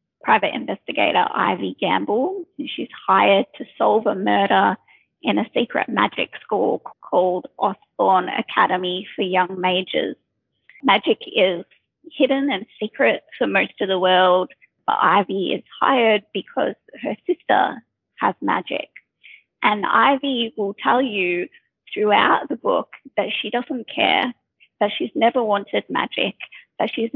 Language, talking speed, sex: English, 130 wpm, female